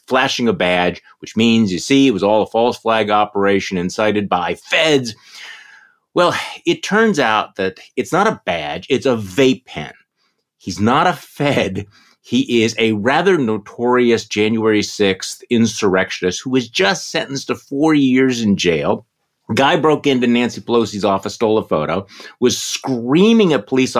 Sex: male